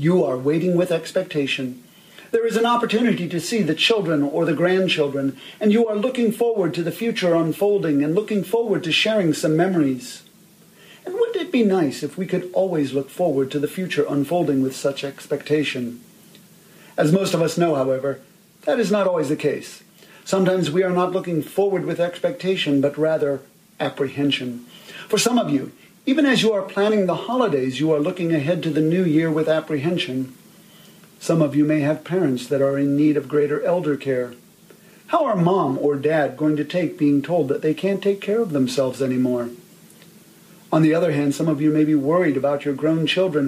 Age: 40-59